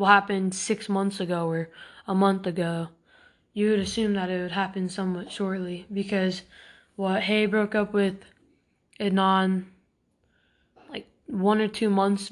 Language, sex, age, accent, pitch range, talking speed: English, female, 20-39, American, 195-225 Hz, 145 wpm